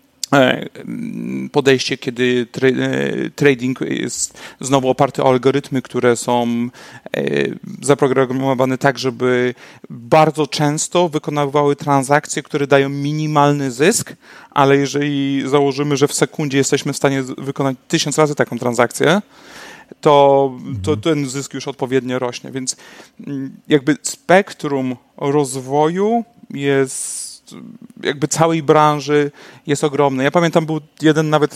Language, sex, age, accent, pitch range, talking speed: Polish, male, 40-59, native, 135-155 Hz, 110 wpm